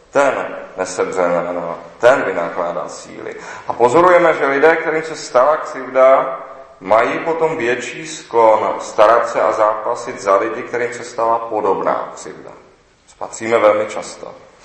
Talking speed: 130 wpm